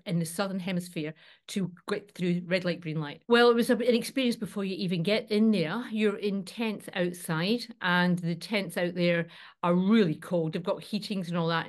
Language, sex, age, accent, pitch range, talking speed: English, female, 40-59, British, 165-195 Hz, 205 wpm